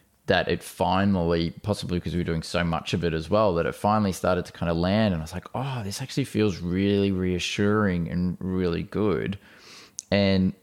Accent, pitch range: Australian, 90-105 Hz